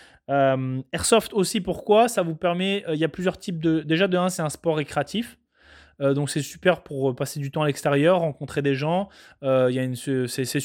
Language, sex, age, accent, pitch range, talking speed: French, male, 20-39, French, 140-185 Hz, 195 wpm